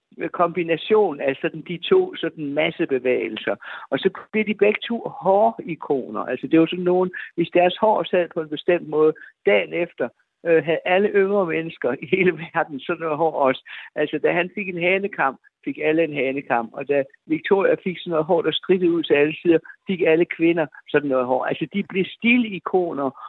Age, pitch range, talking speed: 60-79, 155-200 Hz, 200 wpm